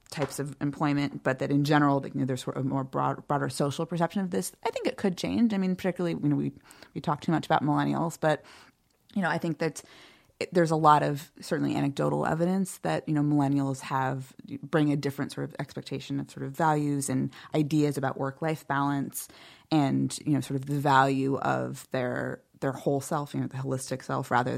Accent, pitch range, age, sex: American, 135-165 Hz, 20-39, female